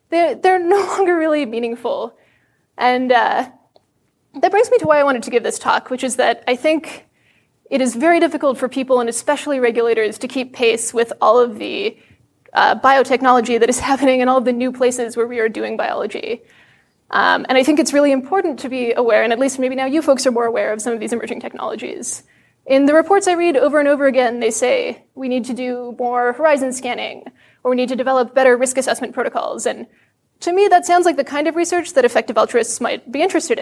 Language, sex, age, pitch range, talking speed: English, female, 20-39, 250-325 Hz, 220 wpm